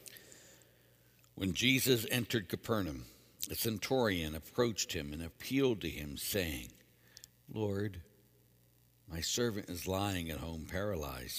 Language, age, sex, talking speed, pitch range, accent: English, 60-79, male, 110 wpm, 75-105 Hz, American